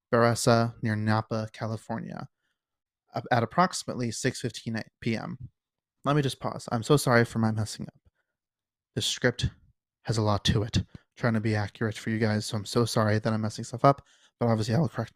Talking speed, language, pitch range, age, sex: 195 wpm, English, 110-130 Hz, 30-49, male